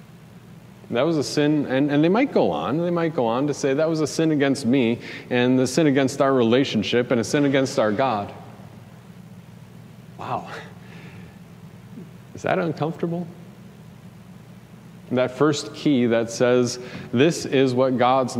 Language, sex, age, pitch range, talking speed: English, male, 40-59, 125-175 Hz, 155 wpm